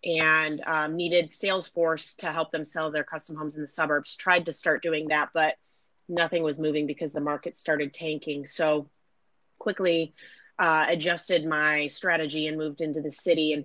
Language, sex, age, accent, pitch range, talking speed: English, female, 30-49, American, 155-170 Hz, 180 wpm